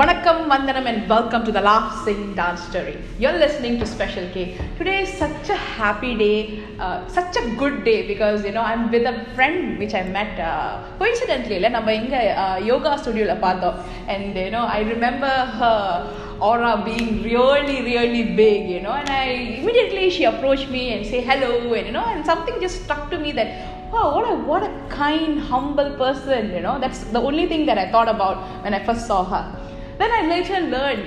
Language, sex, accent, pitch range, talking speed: English, female, Indian, 215-295 Hz, 195 wpm